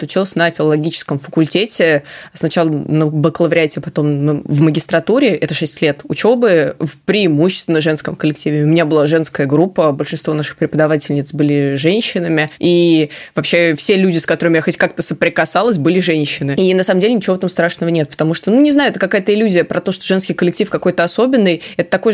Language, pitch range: Russian, 155-185 Hz